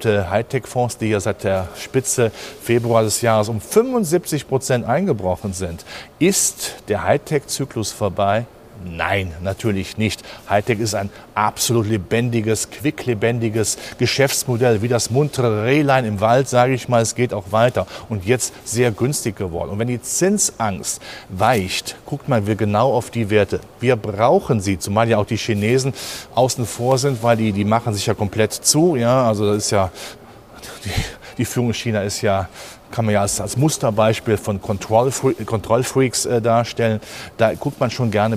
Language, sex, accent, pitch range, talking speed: German, male, German, 105-125 Hz, 165 wpm